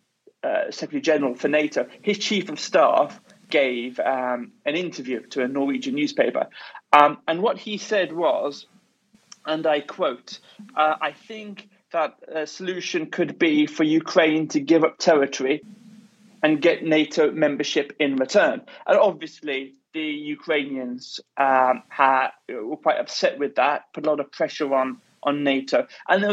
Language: English